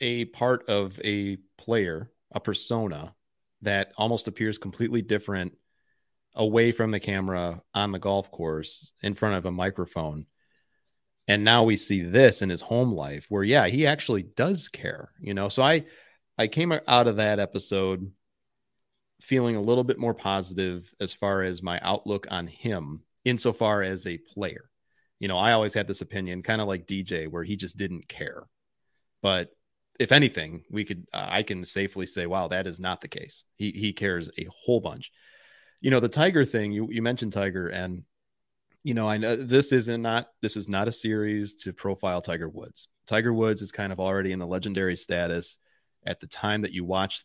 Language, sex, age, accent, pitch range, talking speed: English, male, 30-49, American, 95-115 Hz, 185 wpm